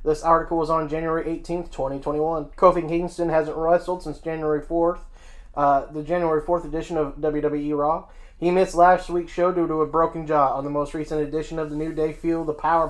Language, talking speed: English, 205 wpm